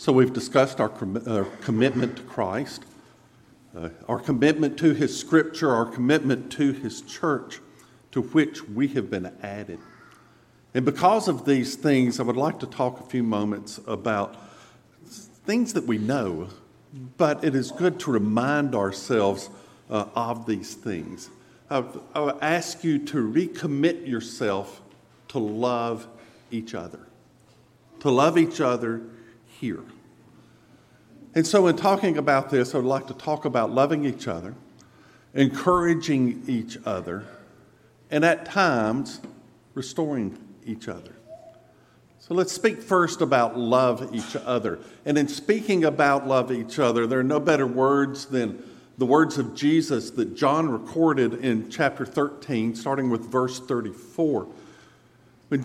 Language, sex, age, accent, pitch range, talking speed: English, male, 50-69, American, 115-155 Hz, 140 wpm